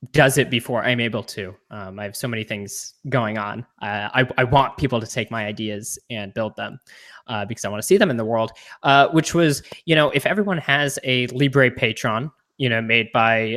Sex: male